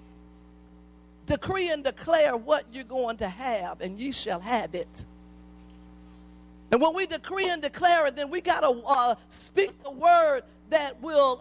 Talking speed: 155 wpm